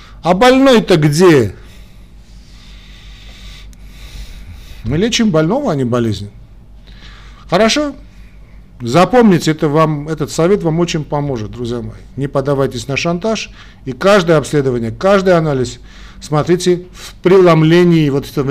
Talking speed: 105 wpm